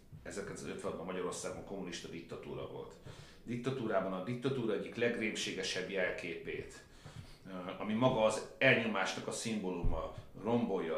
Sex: male